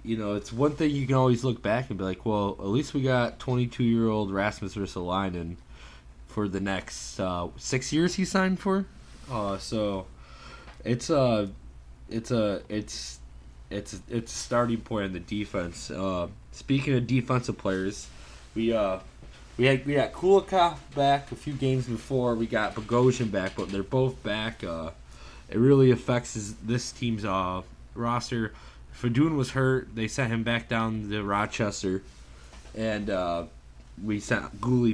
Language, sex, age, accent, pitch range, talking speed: English, male, 20-39, American, 90-120 Hz, 160 wpm